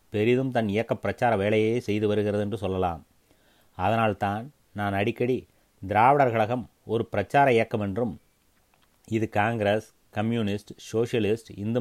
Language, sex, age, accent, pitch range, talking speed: Tamil, male, 30-49, native, 100-120 Hz, 115 wpm